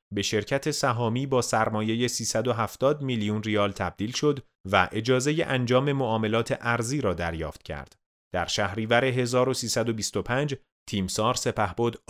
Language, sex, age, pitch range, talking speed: Persian, male, 30-49, 105-135 Hz, 115 wpm